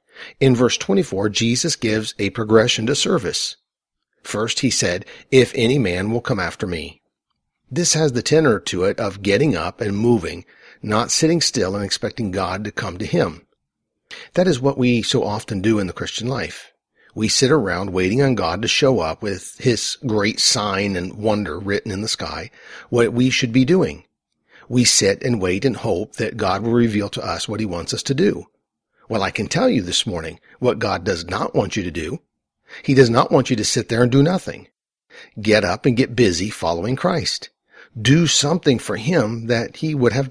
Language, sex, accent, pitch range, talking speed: English, male, American, 105-135 Hz, 200 wpm